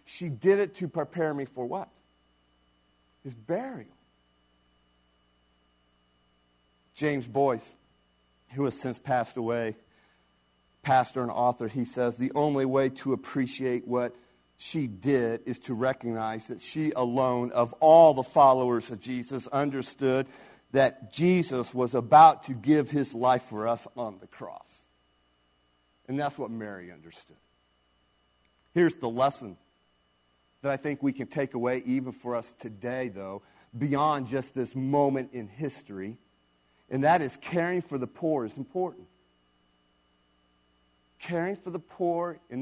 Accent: American